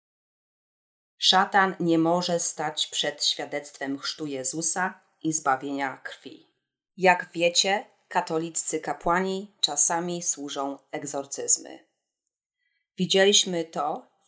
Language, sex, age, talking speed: Polish, female, 30-49, 90 wpm